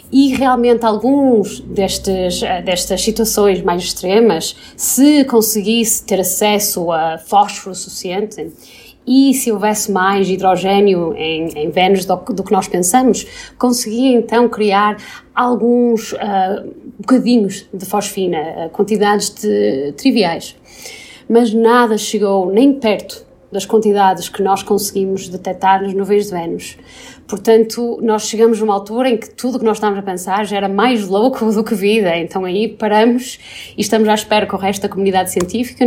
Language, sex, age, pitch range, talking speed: Portuguese, female, 20-39, 195-235 Hz, 145 wpm